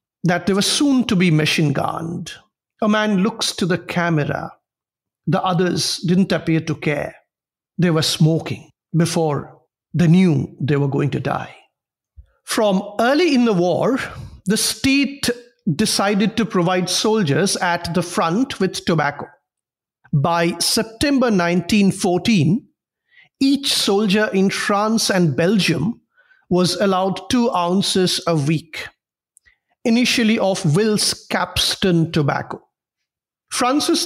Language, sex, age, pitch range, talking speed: English, male, 50-69, 170-215 Hz, 120 wpm